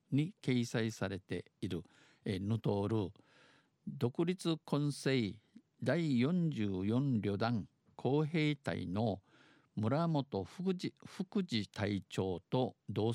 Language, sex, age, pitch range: Japanese, male, 50-69, 100-140 Hz